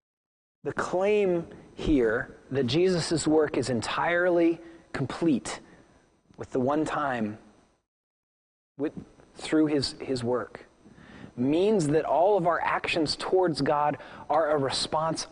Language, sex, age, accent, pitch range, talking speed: English, male, 30-49, American, 150-210 Hz, 110 wpm